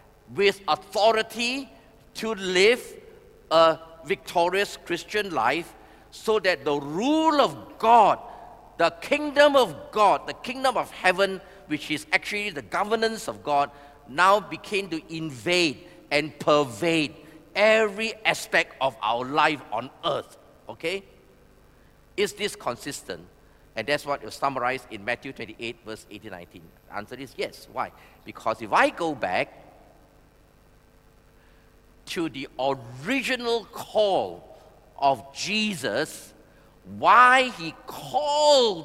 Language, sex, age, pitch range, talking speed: English, male, 50-69, 140-210 Hz, 115 wpm